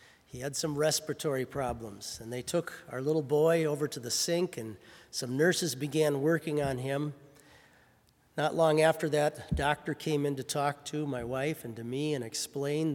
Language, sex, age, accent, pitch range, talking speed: English, male, 40-59, American, 130-155 Hz, 180 wpm